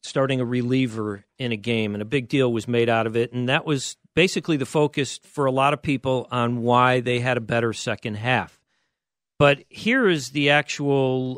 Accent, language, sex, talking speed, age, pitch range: American, English, male, 205 wpm, 50-69, 130-165 Hz